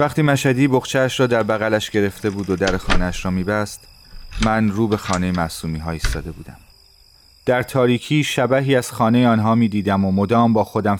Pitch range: 85-110 Hz